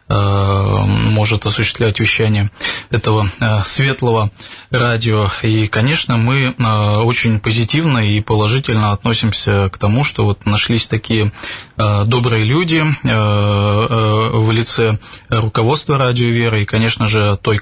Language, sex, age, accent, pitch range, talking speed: Russian, male, 20-39, native, 105-120 Hz, 105 wpm